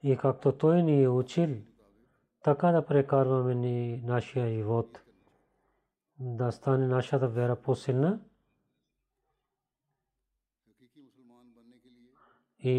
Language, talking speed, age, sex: Bulgarian, 85 wpm, 40-59, male